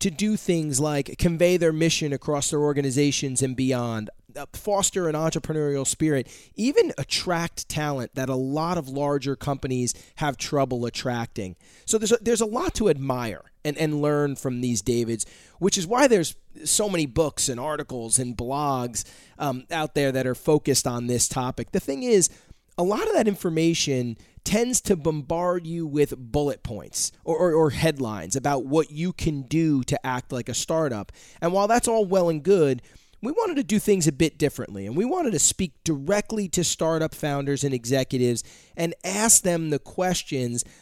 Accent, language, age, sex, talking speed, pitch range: American, English, 30-49, male, 180 wpm, 130-175 Hz